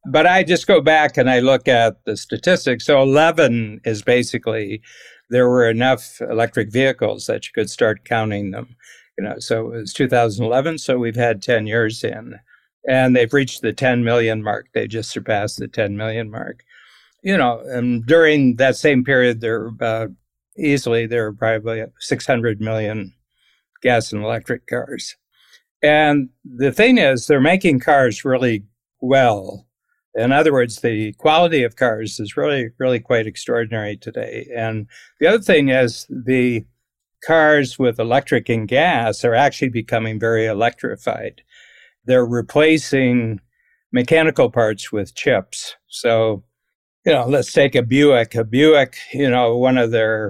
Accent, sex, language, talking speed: American, male, English, 155 wpm